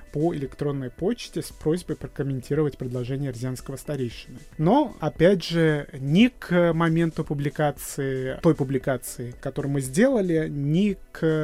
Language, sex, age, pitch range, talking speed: Russian, male, 20-39, 140-175 Hz, 120 wpm